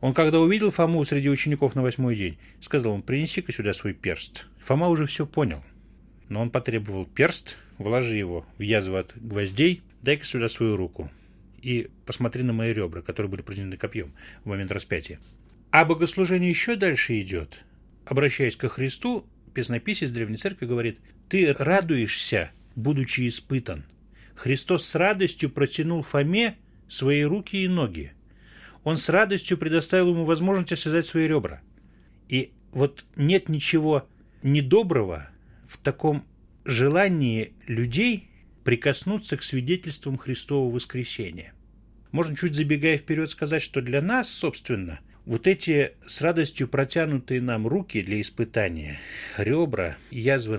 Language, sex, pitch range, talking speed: Russian, male, 110-165 Hz, 135 wpm